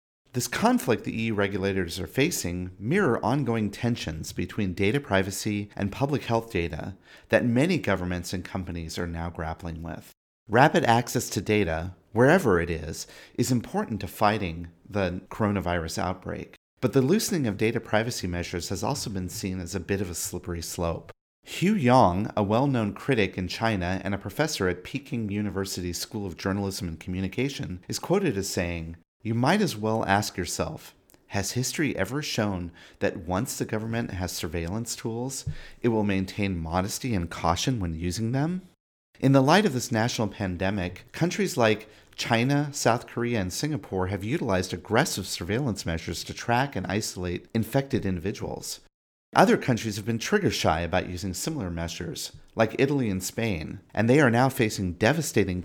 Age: 40-59